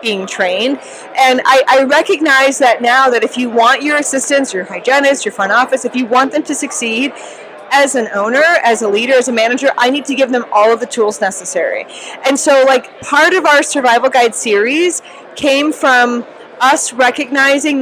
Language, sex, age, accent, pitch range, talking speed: English, female, 40-59, American, 240-295 Hz, 190 wpm